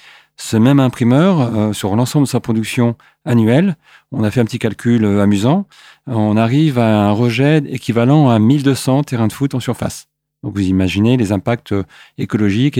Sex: male